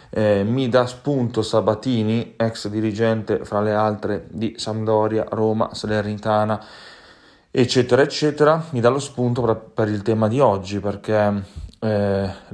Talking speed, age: 130 wpm, 30-49